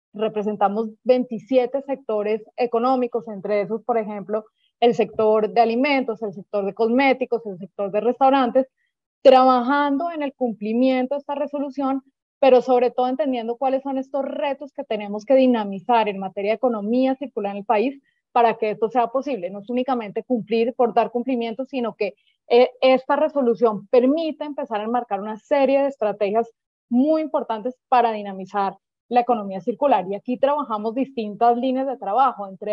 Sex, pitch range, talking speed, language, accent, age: female, 215-265 Hz, 160 wpm, Spanish, Colombian, 20-39